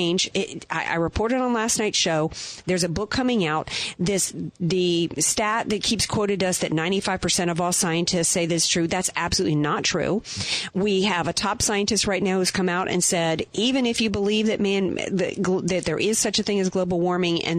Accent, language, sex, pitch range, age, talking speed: American, English, female, 170-210 Hz, 40-59, 210 wpm